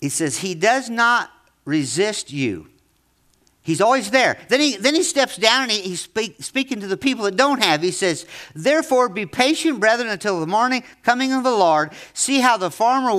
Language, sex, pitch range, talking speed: English, male, 155-235 Hz, 200 wpm